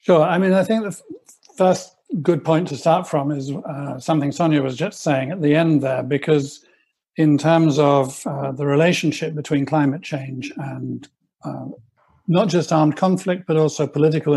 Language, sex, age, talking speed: English, male, 60-79, 180 wpm